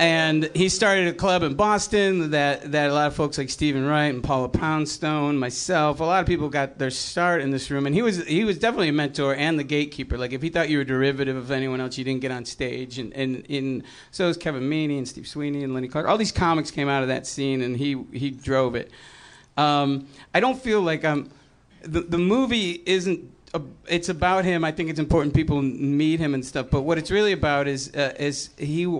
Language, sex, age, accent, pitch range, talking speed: English, male, 40-59, American, 130-160 Hz, 235 wpm